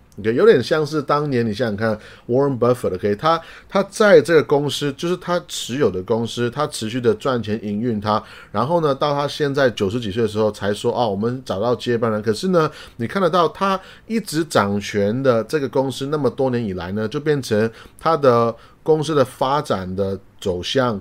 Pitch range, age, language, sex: 110-145 Hz, 30-49, Chinese, male